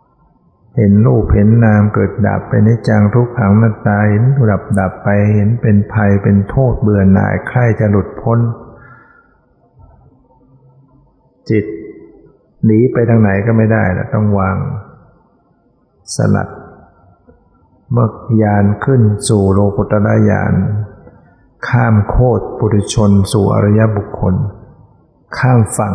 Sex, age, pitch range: male, 60-79, 100-115 Hz